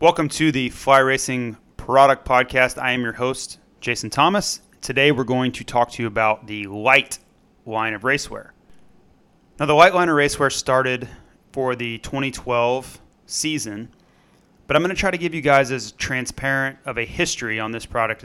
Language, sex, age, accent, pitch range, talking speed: English, male, 30-49, American, 115-140 Hz, 180 wpm